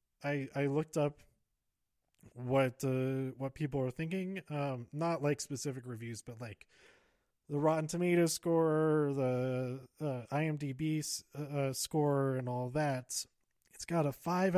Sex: male